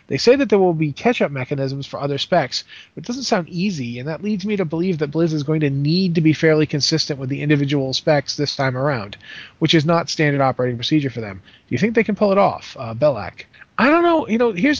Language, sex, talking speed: English, male, 255 wpm